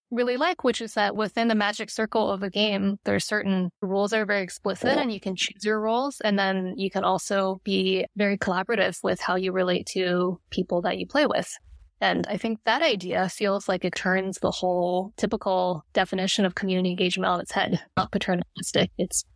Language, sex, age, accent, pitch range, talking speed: English, female, 20-39, American, 185-220 Hz, 205 wpm